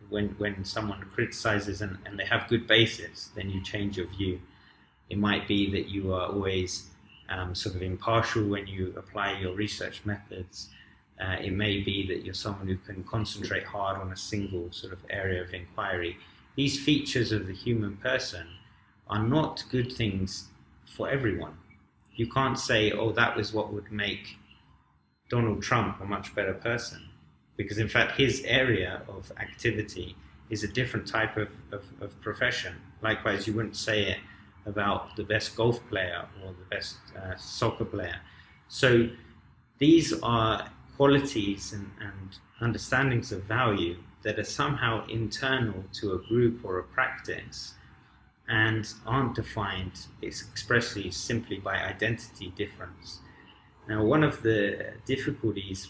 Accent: British